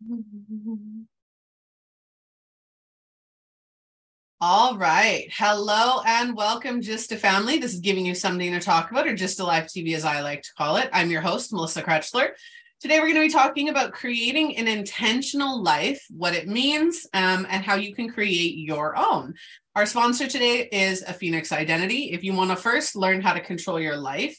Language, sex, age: English, female, 30-49